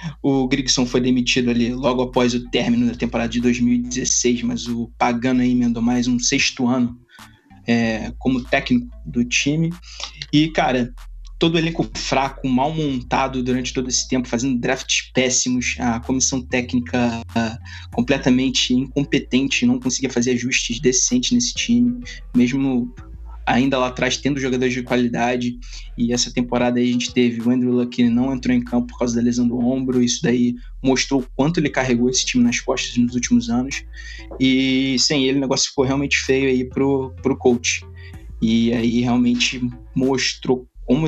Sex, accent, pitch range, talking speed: male, Brazilian, 120-135 Hz, 165 wpm